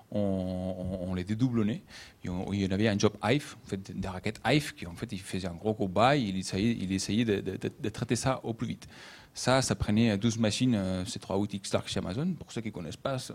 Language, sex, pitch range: English, male, 100-120 Hz